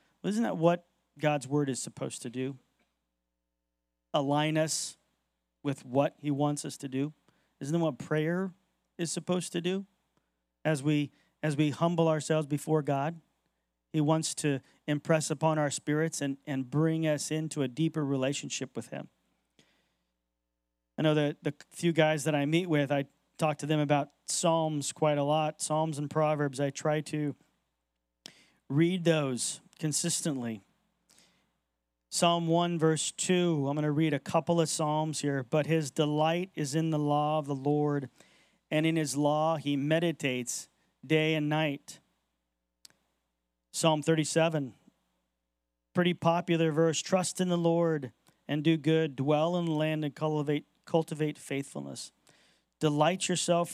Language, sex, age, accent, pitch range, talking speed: English, male, 40-59, American, 135-160 Hz, 145 wpm